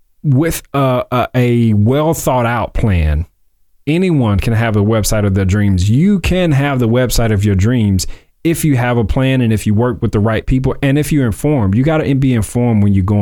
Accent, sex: American, male